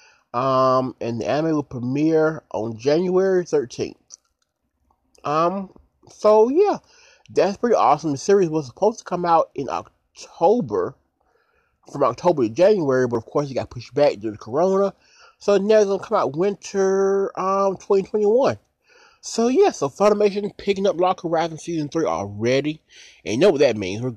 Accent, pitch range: American, 125-195 Hz